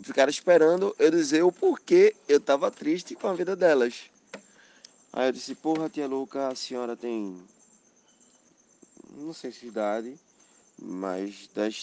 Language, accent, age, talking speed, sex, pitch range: Portuguese, Brazilian, 20-39, 140 wpm, male, 110-155 Hz